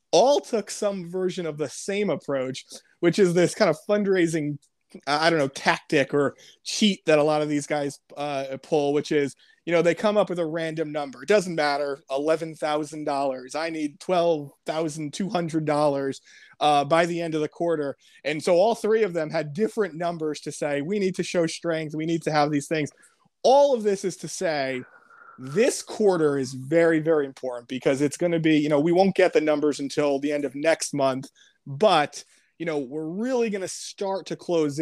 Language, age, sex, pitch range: English, 30-49, male, 145-180 Hz